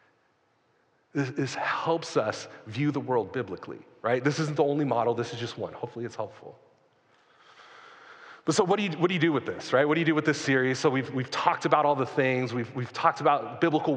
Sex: male